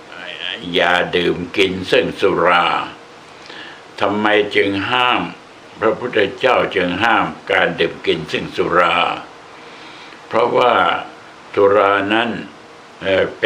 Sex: male